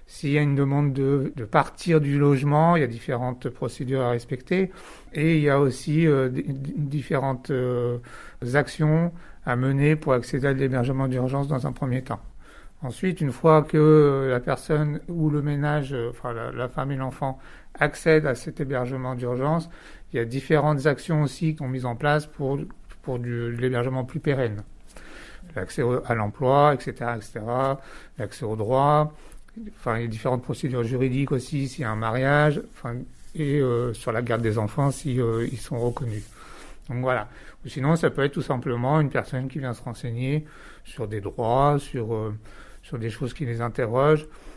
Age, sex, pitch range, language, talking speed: 60-79, male, 120-150 Hz, French, 180 wpm